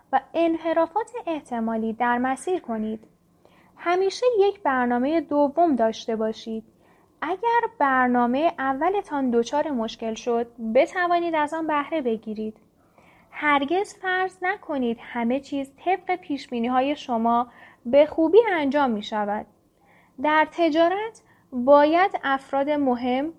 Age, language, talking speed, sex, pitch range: 10-29, Persian, 110 wpm, female, 245-330 Hz